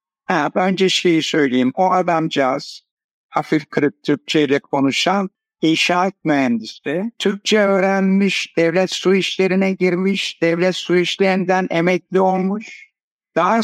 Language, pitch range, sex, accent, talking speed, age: Turkish, 160-210 Hz, male, native, 100 wpm, 60-79